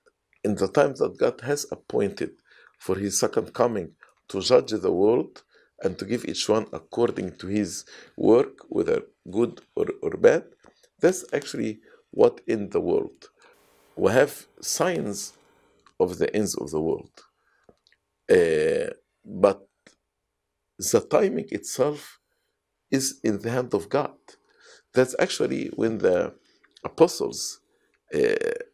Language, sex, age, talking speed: English, male, 50-69, 125 wpm